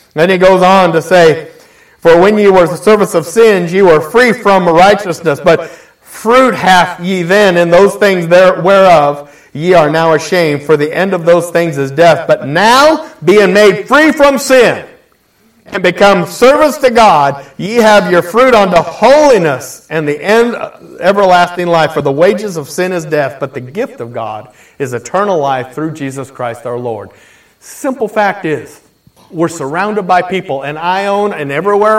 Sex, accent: male, American